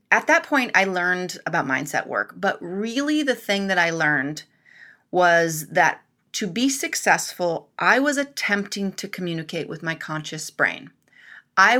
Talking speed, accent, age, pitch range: 155 wpm, American, 30-49, 170-225 Hz